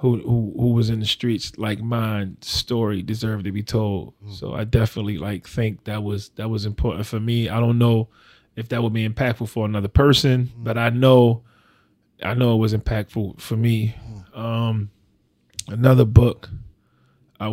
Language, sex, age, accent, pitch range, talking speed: English, male, 20-39, American, 110-145 Hz, 175 wpm